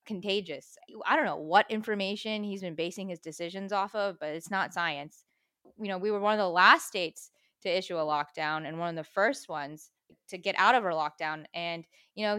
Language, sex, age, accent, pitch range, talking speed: English, female, 20-39, American, 175-225 Hz, 220 wpm